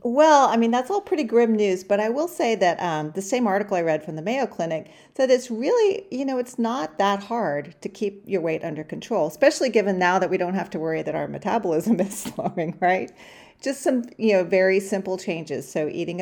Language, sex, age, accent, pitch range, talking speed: English, female, 40-59, American, 165-220 Hz, 230 wpm